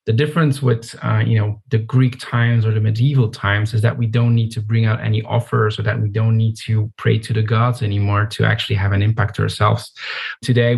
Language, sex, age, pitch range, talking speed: English, male, 20-39, 110-125 Hz, 235 wpm